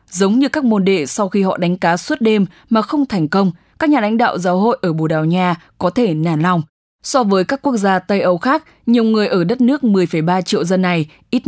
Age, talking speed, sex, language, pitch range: 10-29, 250 wpm, female, English, 180-235 Hz